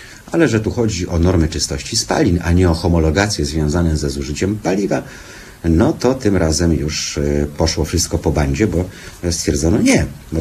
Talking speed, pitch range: 165 wpm, 80-105 Hz